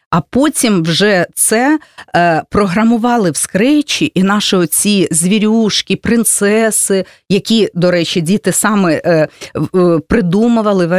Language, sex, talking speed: Russian, female, 105 wpm